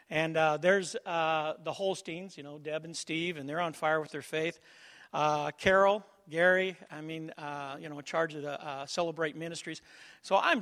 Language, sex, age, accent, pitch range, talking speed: English, male, 50-69, American, 150-185 Hz, 200 wpm